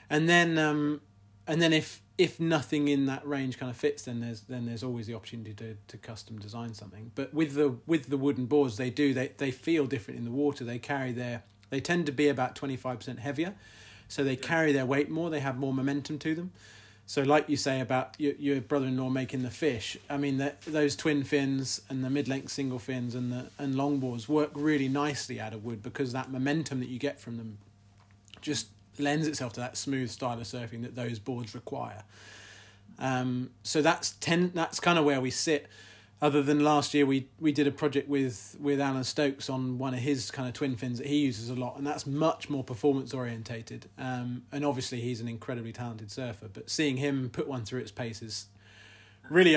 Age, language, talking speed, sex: 30-49, English, 220 wpm, male